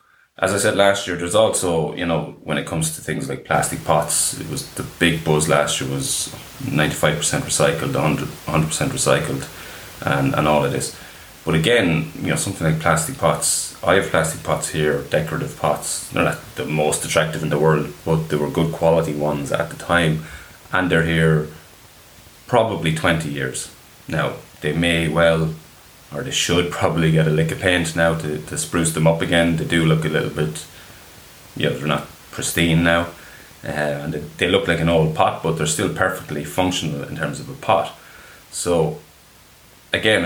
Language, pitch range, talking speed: English, 75-85 Hz, 185 wpm